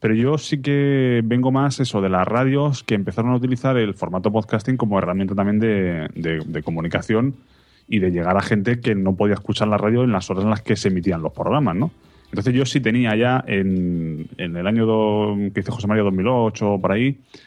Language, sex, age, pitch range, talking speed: Spanish, male, 30-49, 95-120 Hz, 220 wpm